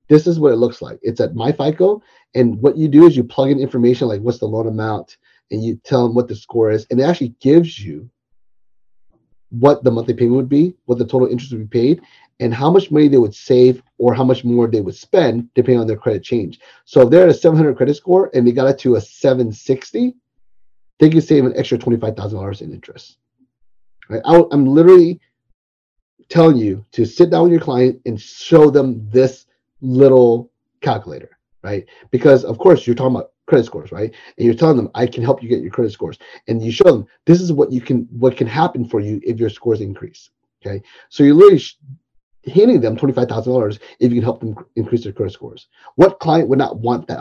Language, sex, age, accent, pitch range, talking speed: English, male, 30-49, American, 115-140 Hz, 220 wpm